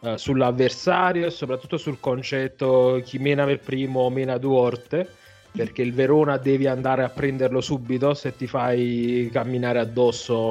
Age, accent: 30-49, native